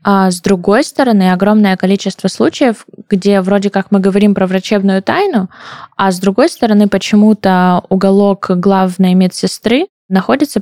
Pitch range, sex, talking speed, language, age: 170-200 Hz, female, 135 wpm, Russian, 20-39